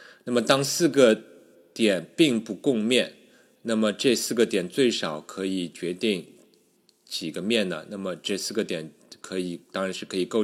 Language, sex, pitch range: Chinese, male, 85-110 Hz